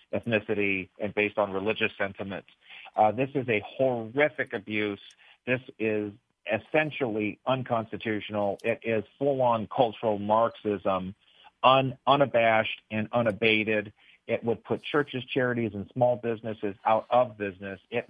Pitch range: 105-120 Hz